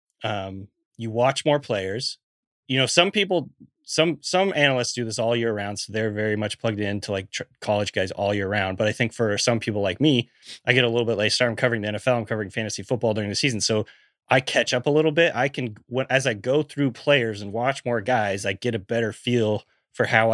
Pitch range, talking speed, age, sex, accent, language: 105-135 Hz, 245 wpm, 20-39, male, American, English